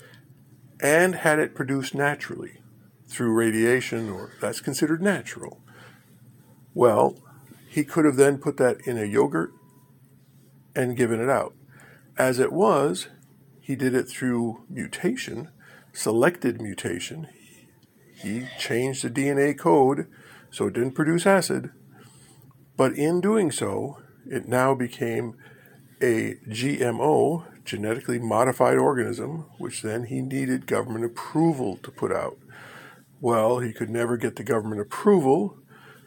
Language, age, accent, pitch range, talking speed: English, 50-69, American, 120-145 Hz, 125 wpm